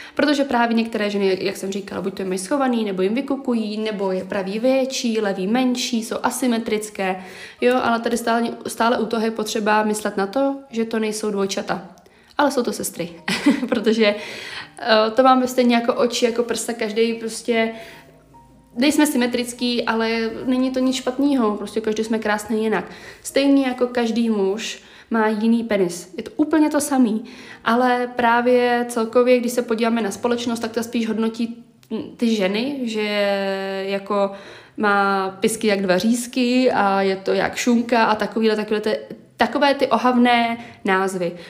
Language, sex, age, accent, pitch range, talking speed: Czech, female, 20-39, native, 200-245 Hz, 160 wpm